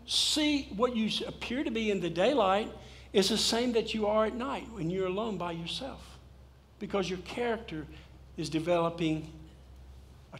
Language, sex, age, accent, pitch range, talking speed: English, male, 60-79, American, 145-180 Hz, 160 wpm